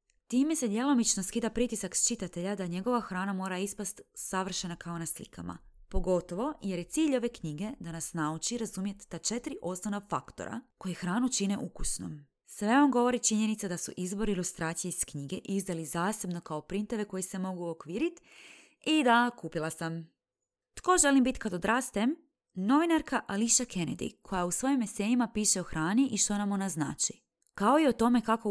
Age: 20-39